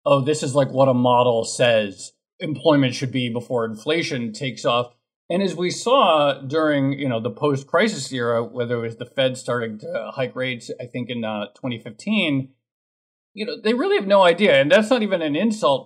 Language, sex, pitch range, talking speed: English, male, 115-145 Hz, 200 wpm